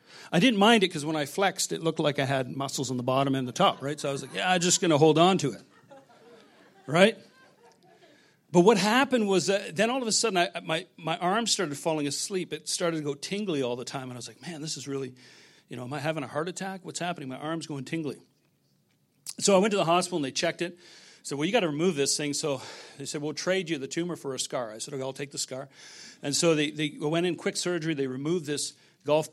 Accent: American